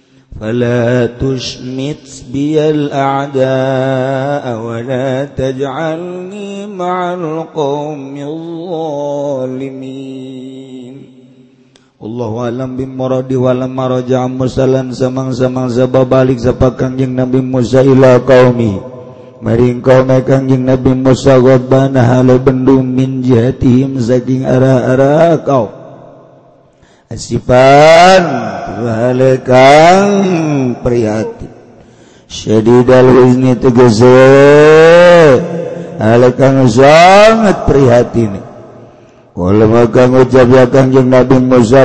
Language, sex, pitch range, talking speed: Indonesian, male, 125-145 Hz, 75 wpm